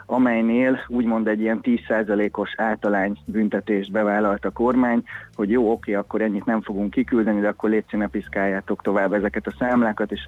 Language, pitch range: Hungarian, 105-120 Hz